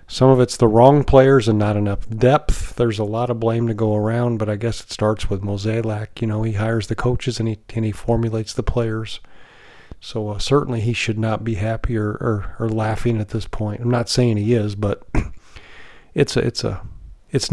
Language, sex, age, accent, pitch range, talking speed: English, male, 40-59, American, 110-125 Hz, 220 wpm